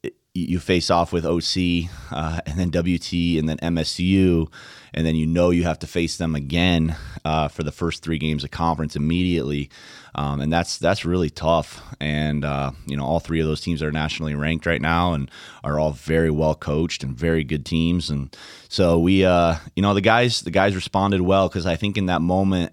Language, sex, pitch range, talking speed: English, male, 80-90 Hz, 210 wpm